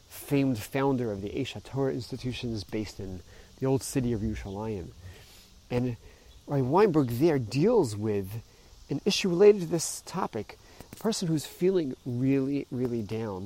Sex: male